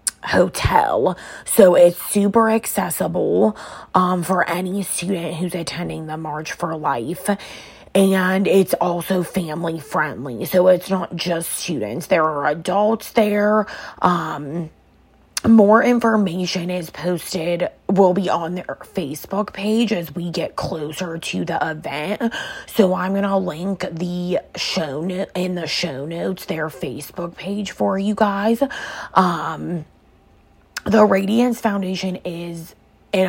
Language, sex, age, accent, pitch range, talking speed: English, female, 20-39, American, 170-205 Hz, 125 wpm